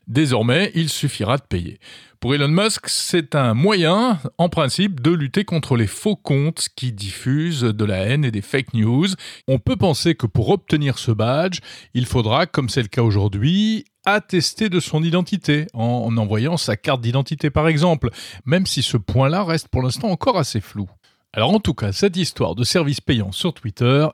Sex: male